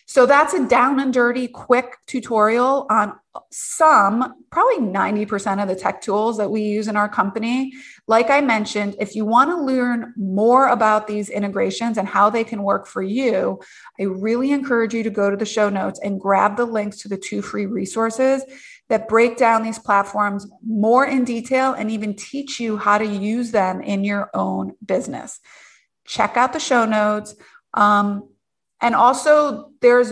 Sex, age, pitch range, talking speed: female, 30-49, 205-245 Hz, 175 wpm